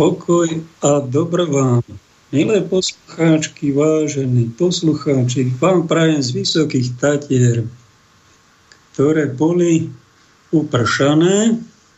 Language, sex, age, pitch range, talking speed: Slovak, male, 50-69, 130-165 Hz, 80 wpm